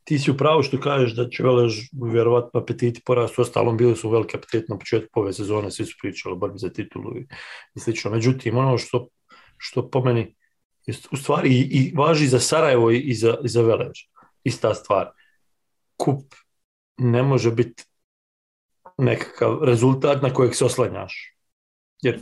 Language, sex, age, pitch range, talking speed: English, male, 40-59, 115-135 Hz, 155 wpm